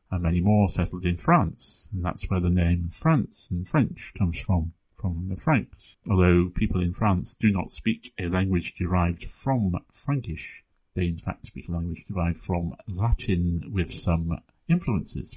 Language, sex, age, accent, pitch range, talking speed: English, male, 50-69, British, 90-110 Hz, 170 wpm